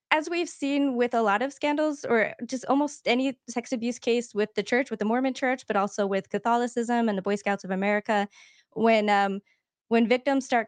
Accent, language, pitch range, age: American, English, 195-230 Hz, 20-39